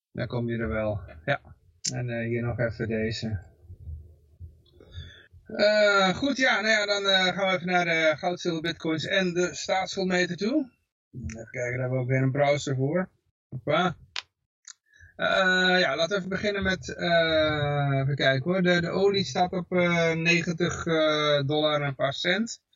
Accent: Dutch